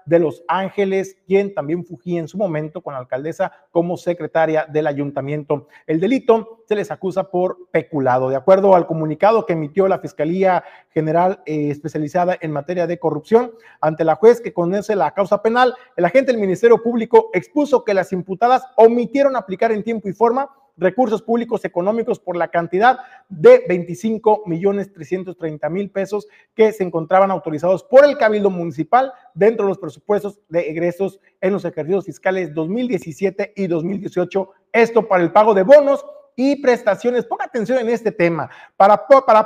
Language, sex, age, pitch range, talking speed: Spanish, male, 40-59, 170-225 Hz, 165 wpm